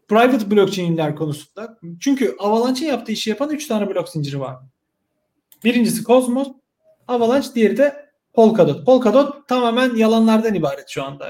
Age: 40-59